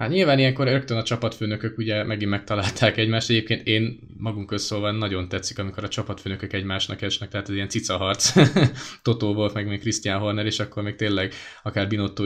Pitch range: 95-110 Hz